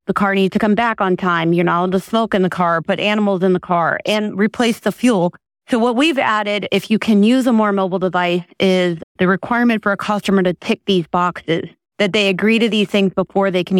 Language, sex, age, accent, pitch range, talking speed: English, female, 30-49, American, 185-225 Hz, 245 wpm